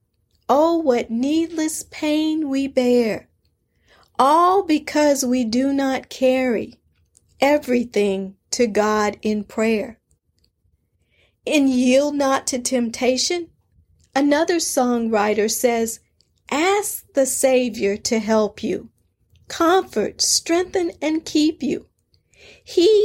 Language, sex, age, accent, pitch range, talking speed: English, female, 40-59, American, 220-290 Hz, 95 wpm